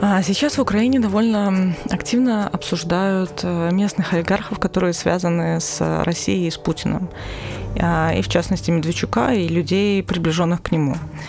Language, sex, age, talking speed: Russian, female, 20-39, 130 wpm